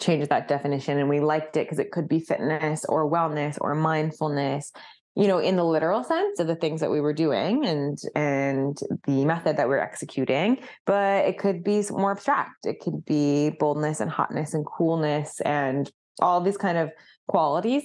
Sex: female